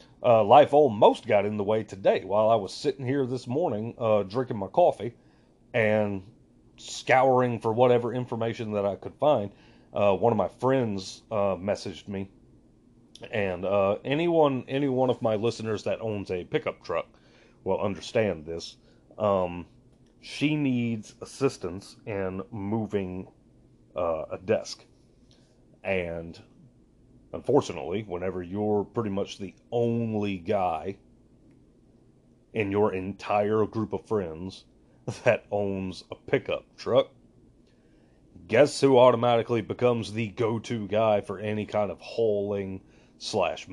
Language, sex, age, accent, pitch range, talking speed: English, male, 30-49, American, 100-120 Hz, 130 wpm